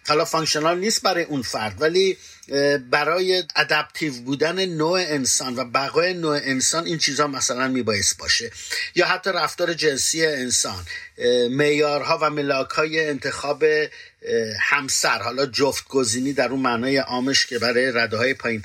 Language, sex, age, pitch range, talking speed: Persian, male, 50-69, 130-170 Hz, 130 wpm